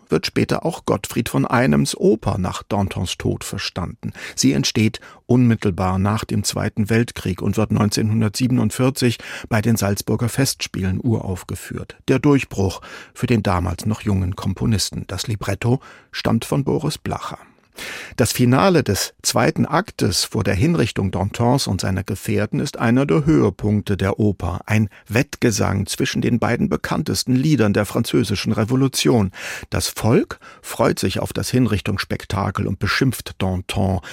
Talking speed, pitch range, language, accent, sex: 135 wpm, 100-125 Hz, German, German, male